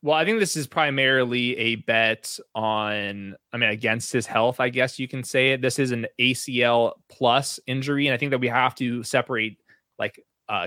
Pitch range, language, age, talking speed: 115-135 Hz, English, 20-39, 205 wpm